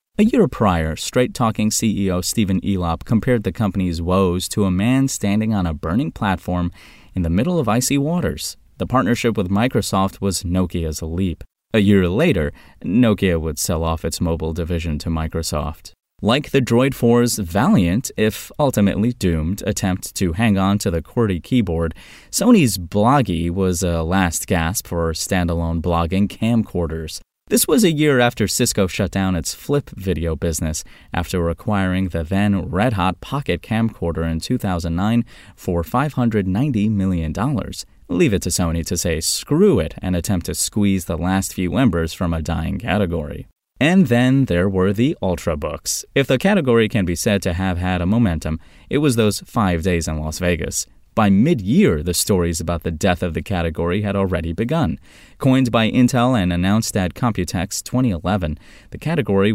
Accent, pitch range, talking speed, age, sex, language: American, 85-115 Hz, 160 wpm, 20-39, male, English